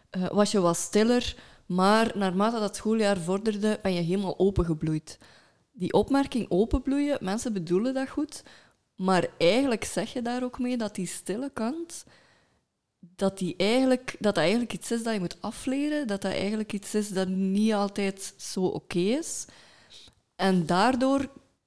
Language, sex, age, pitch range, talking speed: Dutch, female, 20-39, 175-210 Hz, 160 wpm